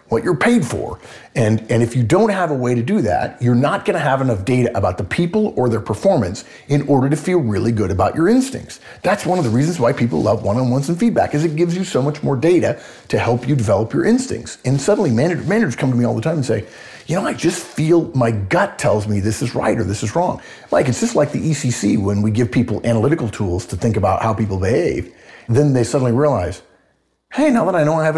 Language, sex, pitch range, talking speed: English, male, 100-145 Hz, 250 wpm